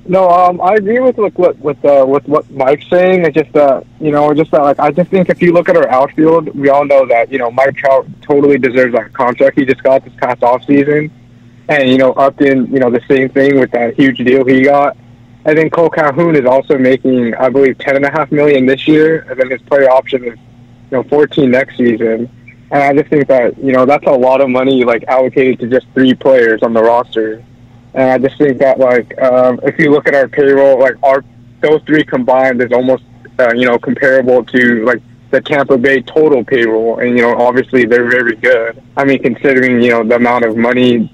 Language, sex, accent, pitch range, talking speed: English, male, American, 125-145 Hz, 235 wpm